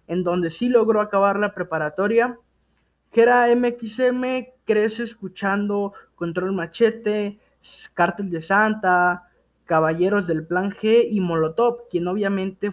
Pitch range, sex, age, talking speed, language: 175-220 Hz, male, 20-39, 115 wpm, Spanish